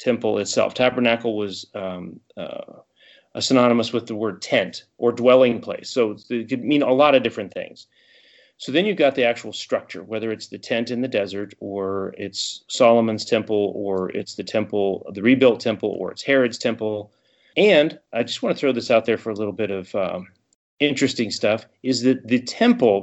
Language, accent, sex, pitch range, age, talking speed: English, American, male, 110-165 Hz, 30-49, 190 wpm